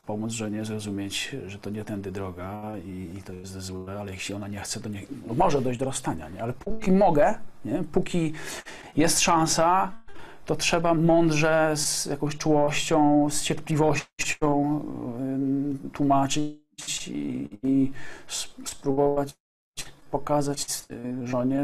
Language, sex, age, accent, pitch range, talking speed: Polish, male, 40-59, native, 125-150 Hz, 120 wpm